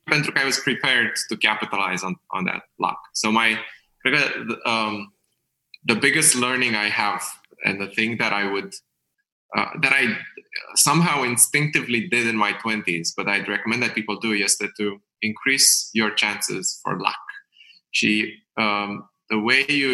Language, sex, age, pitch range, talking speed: Romanian, male, 20-39, 105-125 Hz, 150 wpm